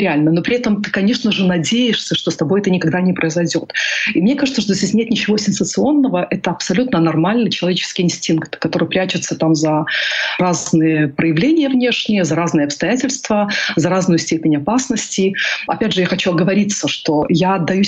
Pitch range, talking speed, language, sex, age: 160-200 Hz, 170 wpm, Russian, female, 40-59